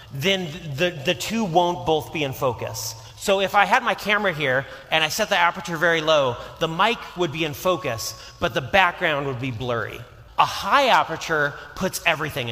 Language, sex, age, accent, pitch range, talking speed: English, male, 30-49, American, 135-185 Hz, 190 wpm